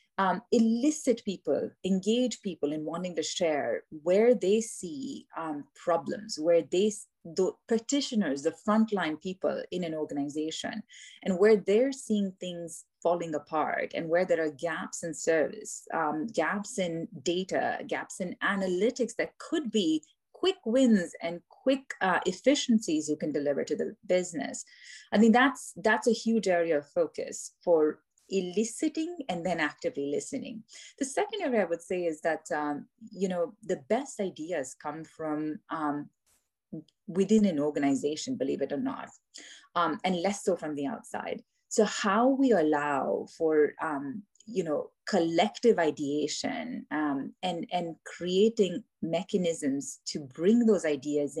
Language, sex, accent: English, female, Indian